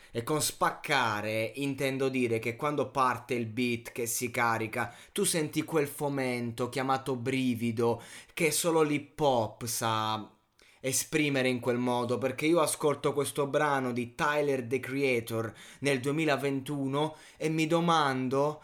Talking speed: 135 wpm